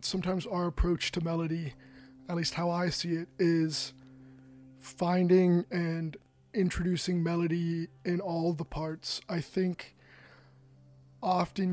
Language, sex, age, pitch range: English, male, 20-39, 145-175 Hz